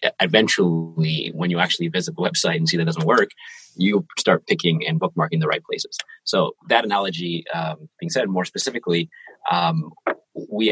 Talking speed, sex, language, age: 170 wpm, male, English, 30-49